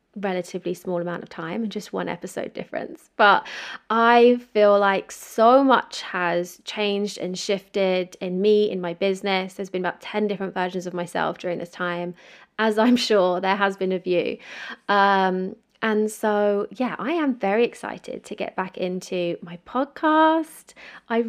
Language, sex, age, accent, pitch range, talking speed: English, female, 20-39, British, 185-225 Hz, 165 wpm